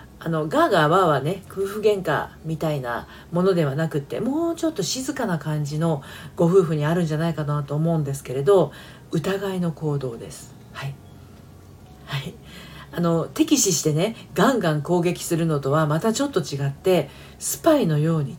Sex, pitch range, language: female, 145-205 Hz, Japanese